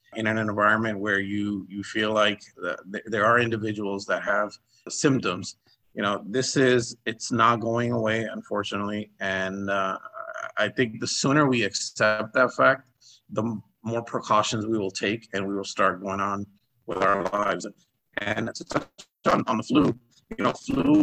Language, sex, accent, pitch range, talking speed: English, male, American, 105-125 Hz, 155 wpm